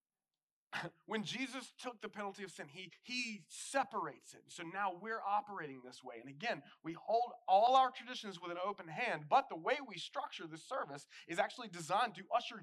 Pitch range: 165-220 Hz